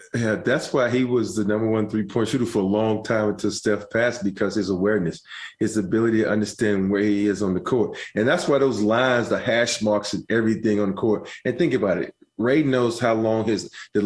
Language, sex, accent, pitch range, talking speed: English, male, American, 100-110 Hz, 225 wpm